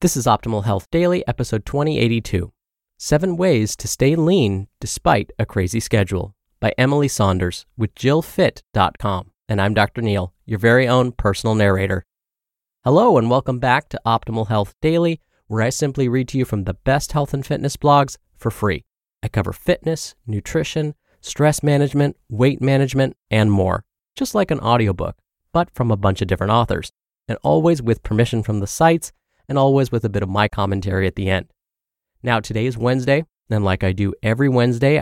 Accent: American